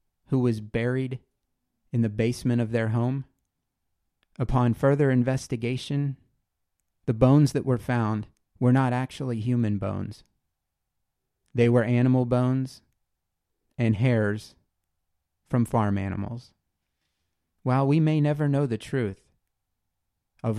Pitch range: 100-125 Hz